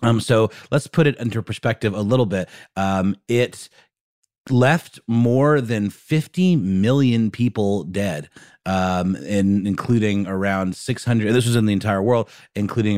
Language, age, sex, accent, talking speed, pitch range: English, 30-49, male, American, 145 wpm, 95-125 Hz